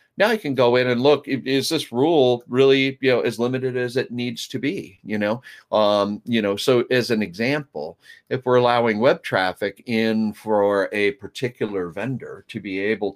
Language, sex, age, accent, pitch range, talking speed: English, male, 40-59, American, 95-130 Hz, 190 wpm